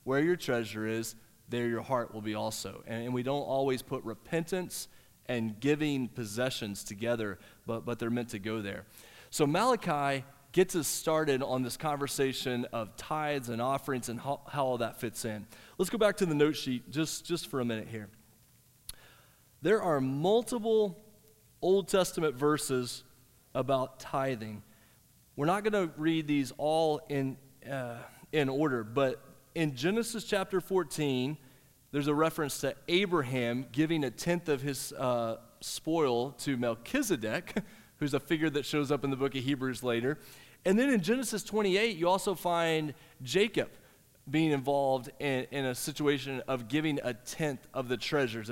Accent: American